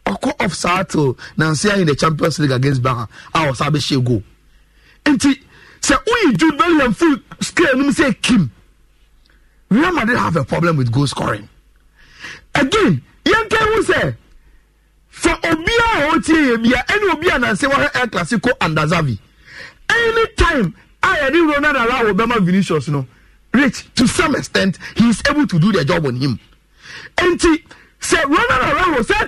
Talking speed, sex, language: 150 wpm, male, English